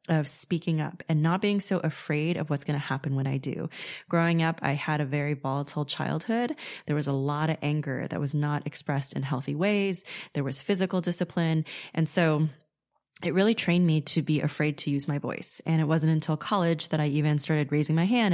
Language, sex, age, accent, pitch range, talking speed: English, female, 20-39, American, 150-170 Hz, 215 wpm